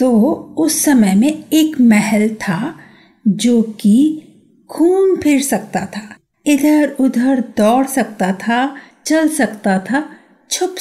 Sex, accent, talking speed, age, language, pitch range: female, native, 120 wpm, 50-69, Hindi, 210-295 Hz